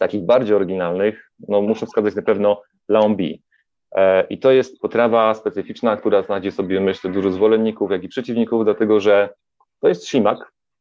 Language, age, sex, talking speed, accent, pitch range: Polish, 30-49, male, 155 wpm, native, 95-115 Hz